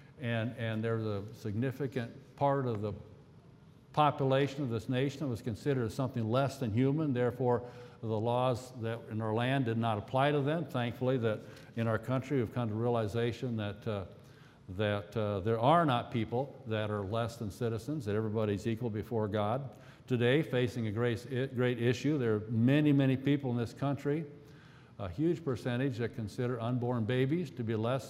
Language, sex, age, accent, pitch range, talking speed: English, male, 60-79, American, 115-140 Hz, 175 wpm